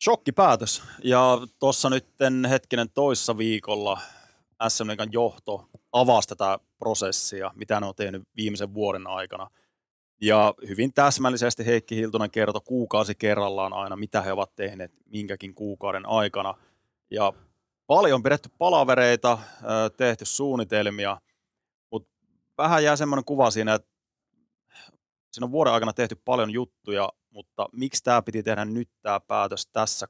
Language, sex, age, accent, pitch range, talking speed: Finnish, male, 30-49, native, 100-120 Hz, 130 wpm